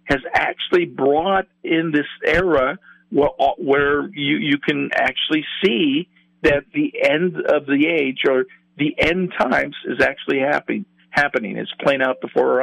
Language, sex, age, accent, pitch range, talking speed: English, male, 50-69, American, 120-185 Hz, 150 wpm